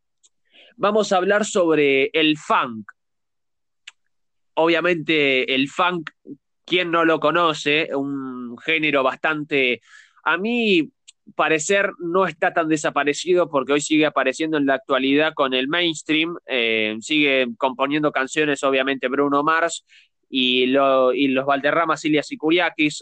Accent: Argentinian